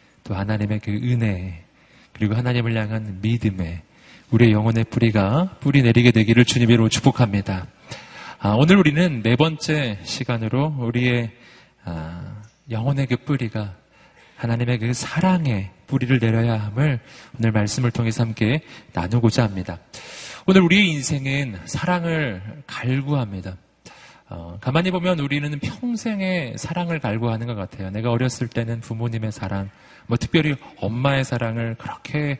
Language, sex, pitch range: Korean, male, 105-135 Hz